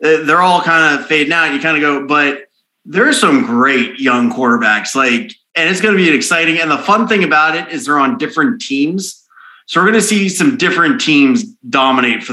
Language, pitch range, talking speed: English, 130-165 Hz, 225 wpm